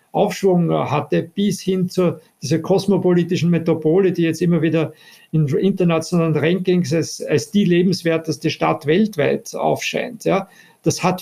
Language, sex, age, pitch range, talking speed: German, male, 50-69, 160-190 Hz, 135 wpm